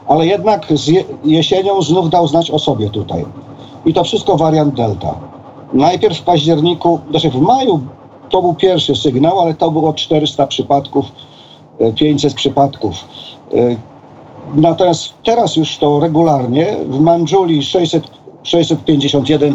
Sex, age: male, 50-69